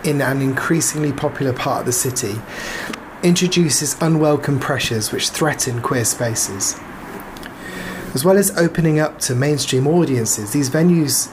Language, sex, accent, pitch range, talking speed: English, male, British, 125-155 Hz, 130 wpm